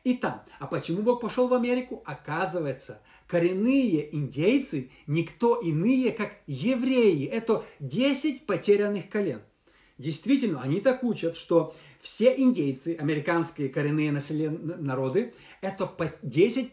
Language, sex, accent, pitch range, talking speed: Russian, male, native, 155-230 Hz, 120 wpm